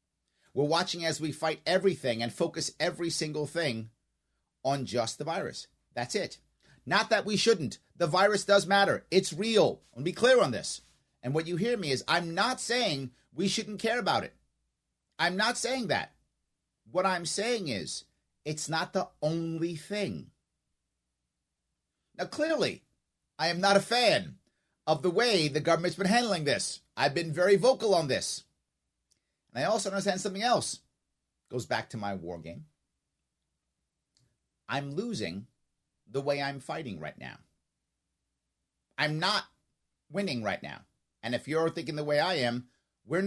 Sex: male